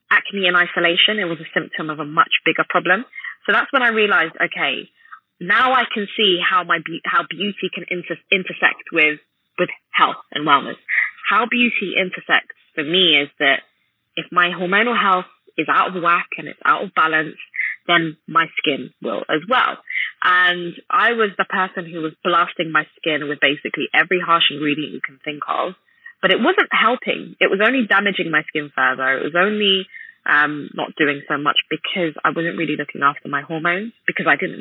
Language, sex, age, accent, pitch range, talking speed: English, female, 20-39, British, 150-190 Hz, 185 wpm